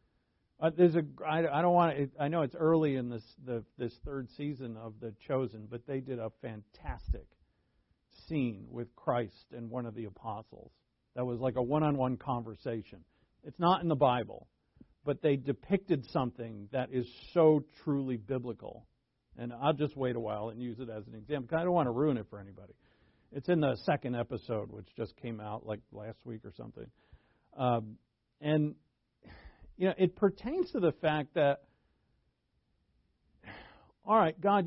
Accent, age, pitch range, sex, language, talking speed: American, 50-69, 120-190 Hz, male, English, 175 wpm